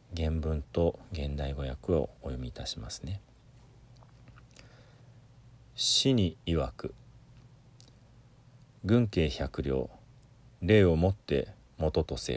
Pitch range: 85-125 Hz